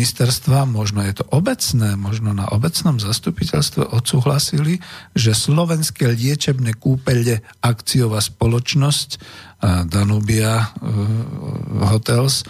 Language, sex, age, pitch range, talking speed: Slovak, male, 50-69, 110-130 Hz, 85 wpm